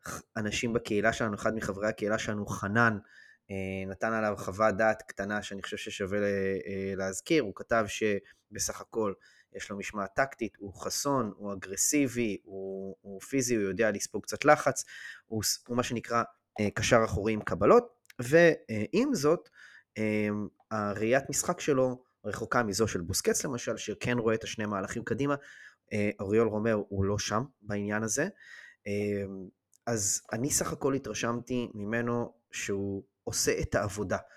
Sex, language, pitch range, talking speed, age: male, Hebrew, 100-120 Hz, 135 wpm, 20-39